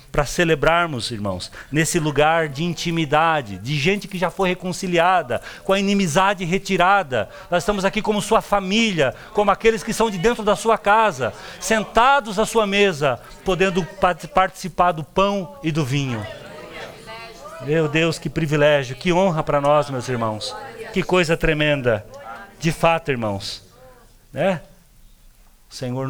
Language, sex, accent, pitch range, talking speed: Portuguese, male, Brazilian, 110-170 Hz, 145 wpm